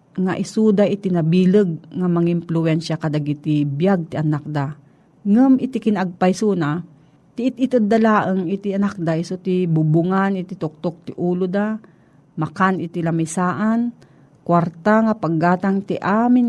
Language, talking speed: Filipino, 140 wpm